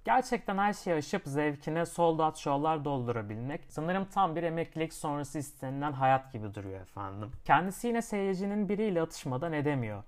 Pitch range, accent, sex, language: 125-185 Hz, native, male, Turkish